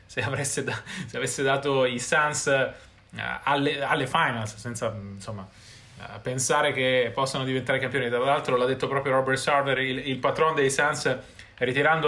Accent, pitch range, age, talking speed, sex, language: native, 115-135 Hz, 20-39, 165 wpm, male, Italian